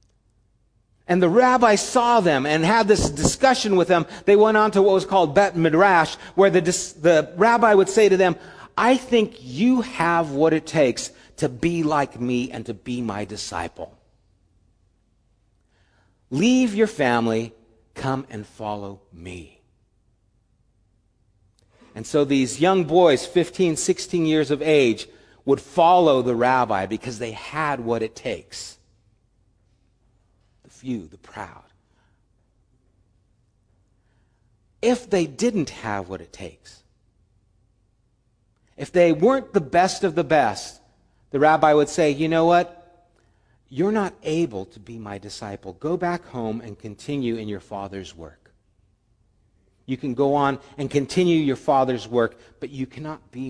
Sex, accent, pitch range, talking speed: male, American, 100-160 Hz, 140 wpm